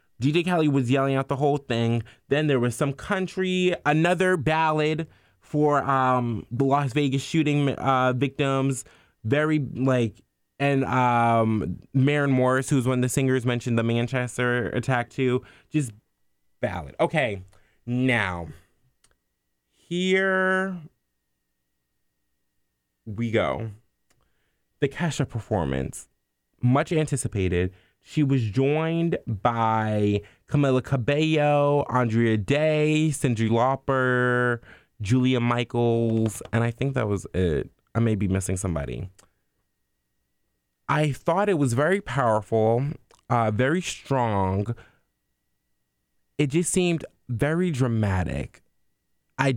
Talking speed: 110 wpm